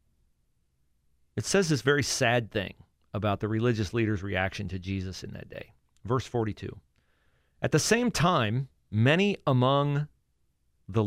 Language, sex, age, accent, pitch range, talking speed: English, male, 40-59, American, 75-115 Hz, 135 wpm